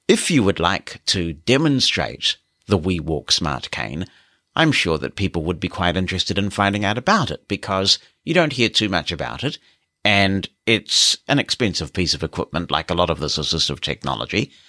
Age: 60-79